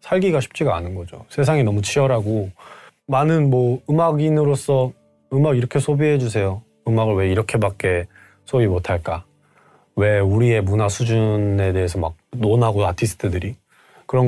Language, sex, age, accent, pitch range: Korean, male, 20-39, native, 100-135 Hz